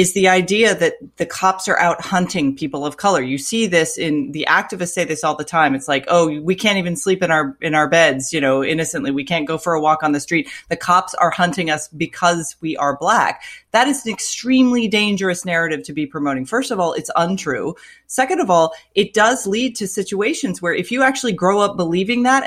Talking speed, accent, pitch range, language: 230 wpm, American, 160-220 Hz, English